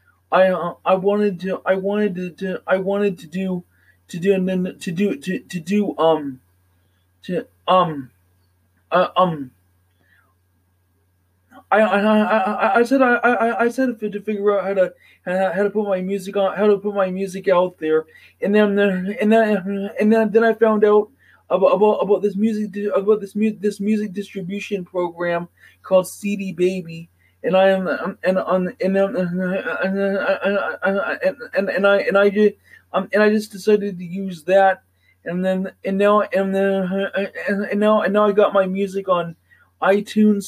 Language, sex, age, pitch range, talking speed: English, male, 20-39, 180-205 Hz, 170 wpm